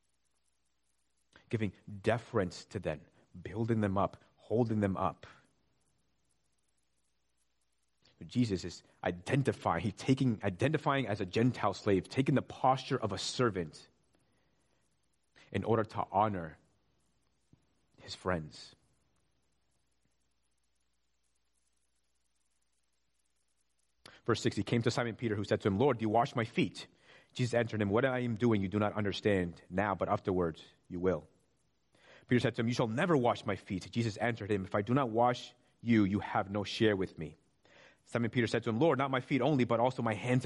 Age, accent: 30-49, American